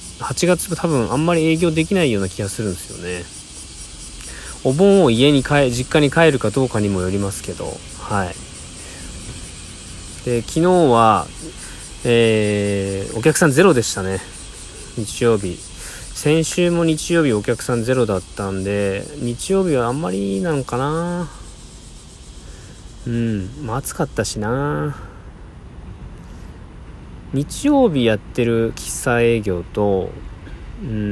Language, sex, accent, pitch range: Japanese, male, native, 95-140 Hz